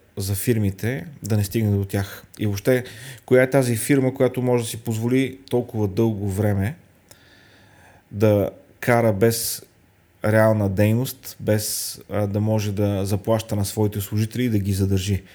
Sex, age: male, 30-49